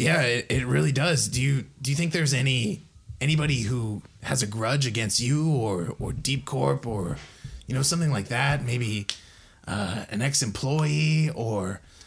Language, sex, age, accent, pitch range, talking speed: English, male, 20-39, American, 110-140 Hz, 175 wpm